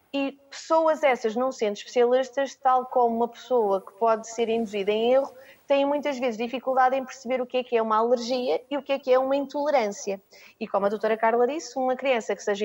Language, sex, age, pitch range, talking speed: Portuguese, female, 30-49, 215-265 Hz, 225 wpm